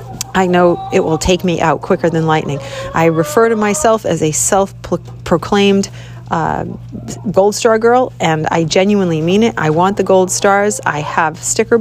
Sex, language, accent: female, English, American